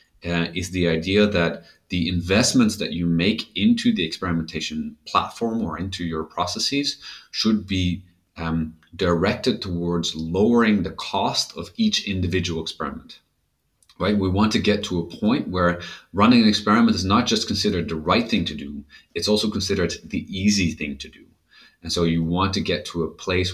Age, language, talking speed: 30-49, English, 175 wpm